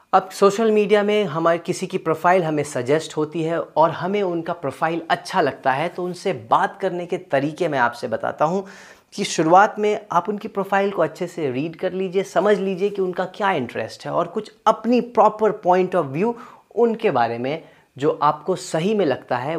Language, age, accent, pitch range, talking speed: Hindi, 30-49, native, 150-205 Hz, 195 wpm